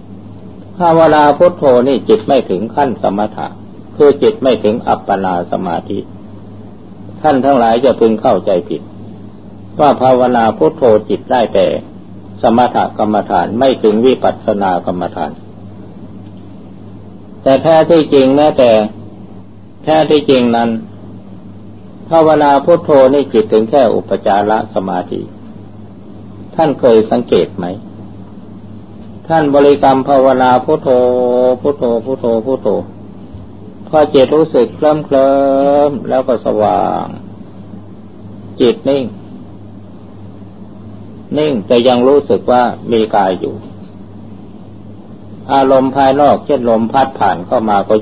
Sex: male